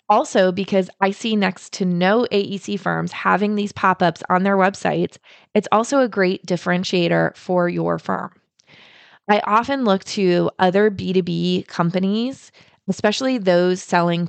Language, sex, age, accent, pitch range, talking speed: English, female, 20-39, American, 175-210 Hz, 140 wpm